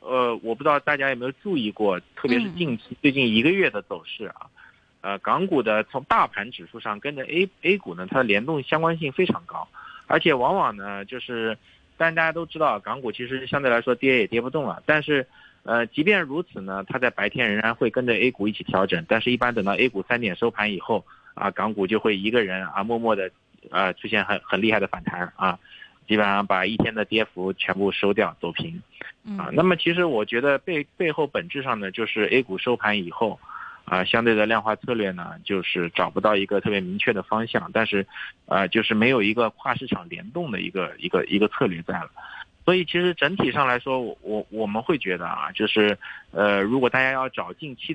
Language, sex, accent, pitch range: Chinese, male, native, 105-140 Hz